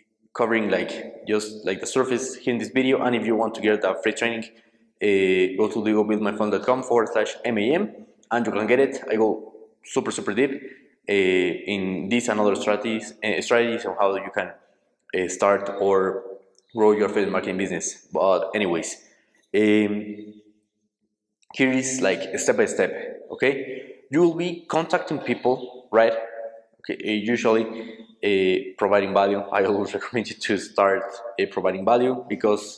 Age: 20-39